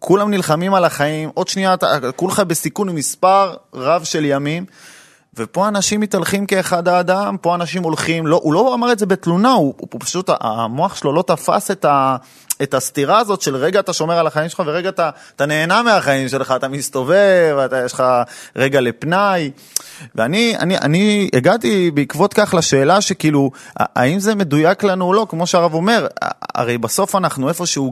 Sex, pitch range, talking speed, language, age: male, 135-180 Hz, 175 wpm, Hebrew, 30-49